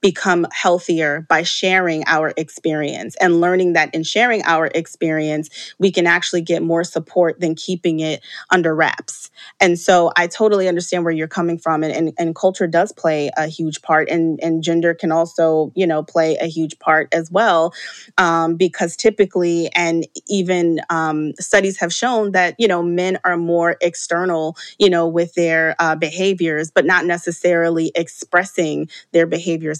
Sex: female